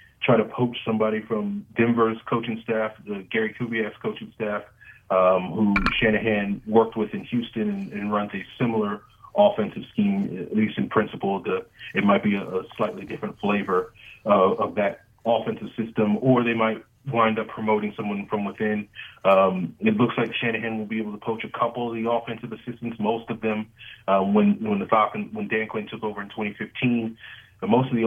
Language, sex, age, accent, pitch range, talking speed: English, male, 30-49, American, 105-120 Hz, 190 wpm